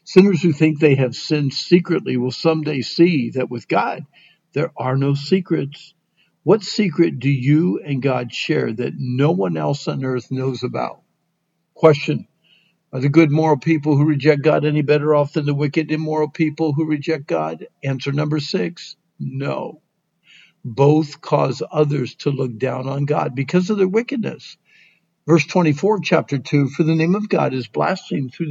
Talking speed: 170 wpm